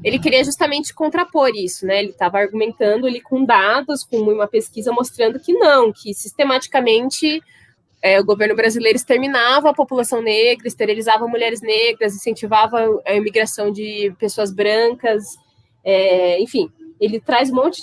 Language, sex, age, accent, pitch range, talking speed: Portuguese, female, 20-39, Brazilian, 200-255 Hz, 145 wpm